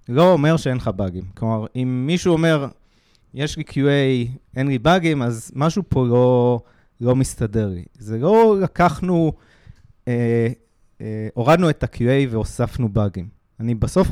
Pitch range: 115-155 Hz